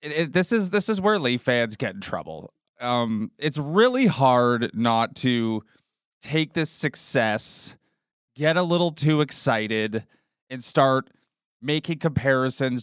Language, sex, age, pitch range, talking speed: English, male, 20-39, 125-150 Hz, 140 wpm